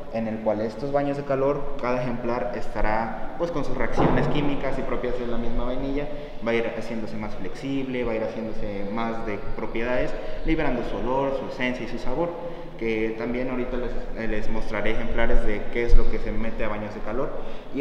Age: 20-39